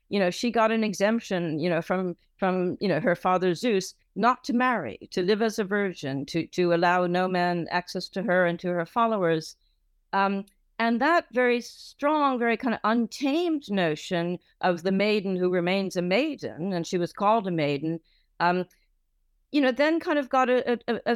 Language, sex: English, female